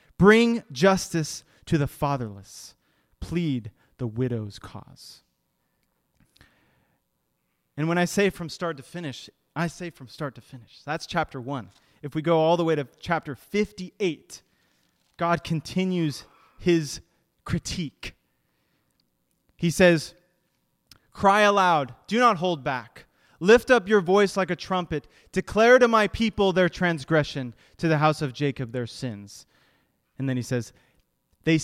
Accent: American